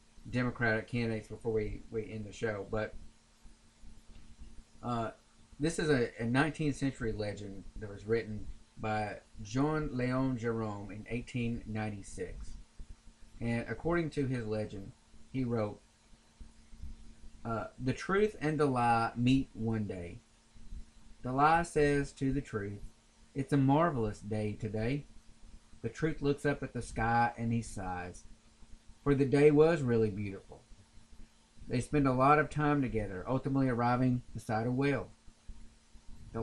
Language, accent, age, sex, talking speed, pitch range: English, American, 30-49, male, 135 wpm, 105-135 Hz